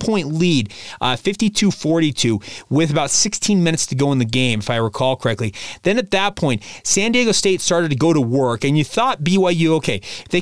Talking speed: 205 wpm